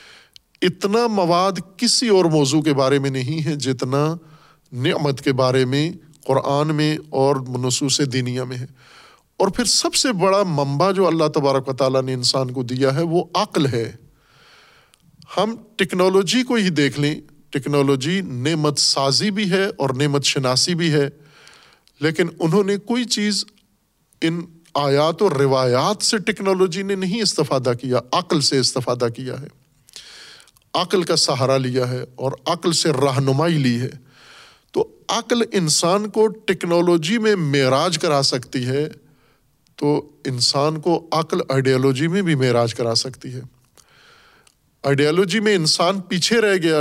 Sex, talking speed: male, 145 wpm